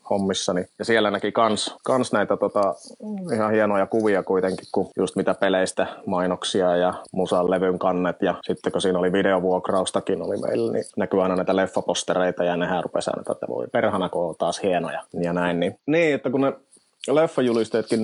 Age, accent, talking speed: 30-49, native, 175 wpm